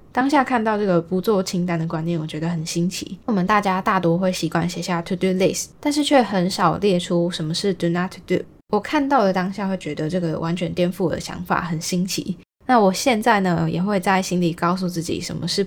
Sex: female